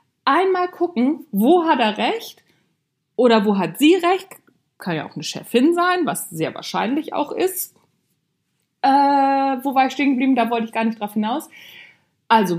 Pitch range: 225-300 Hz